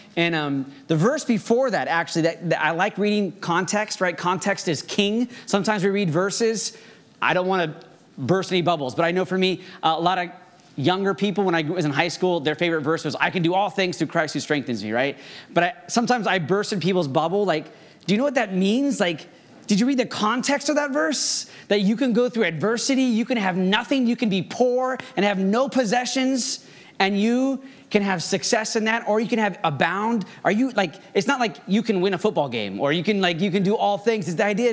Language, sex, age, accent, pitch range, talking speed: English, male, 30-49, American, 175-225 Hz, 240 wpm